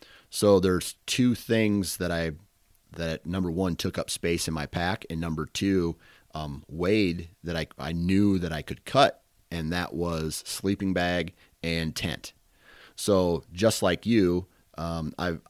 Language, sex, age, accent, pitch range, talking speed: English, male, 30-49, American, 75-90 Hz, 160 wpm